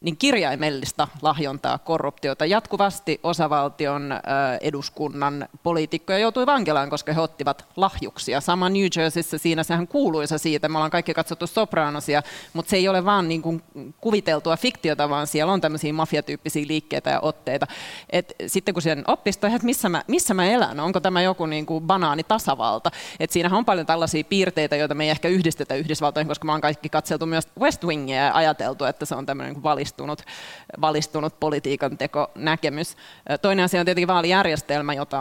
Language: Finnish